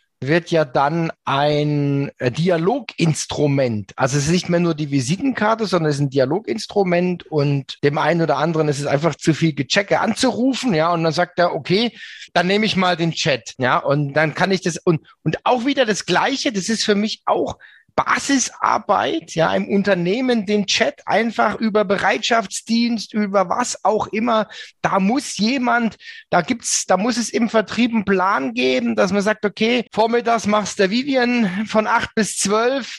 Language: German